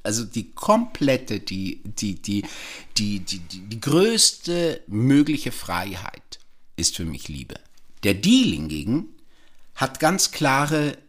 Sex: male